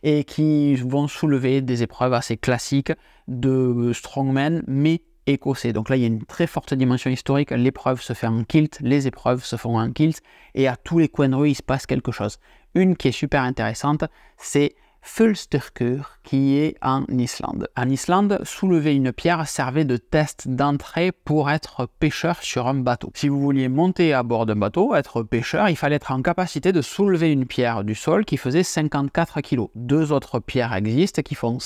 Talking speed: 195 wpm